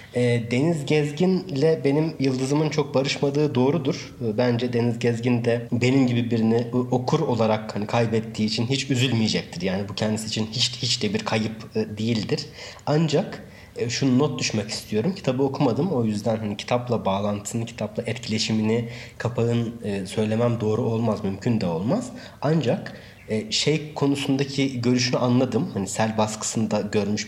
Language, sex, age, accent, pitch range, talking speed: Turkish, male, 30-49, native, 105-135 Hz, 135 wpm